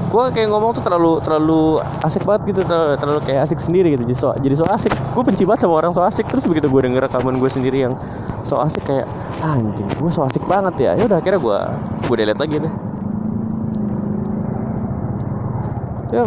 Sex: male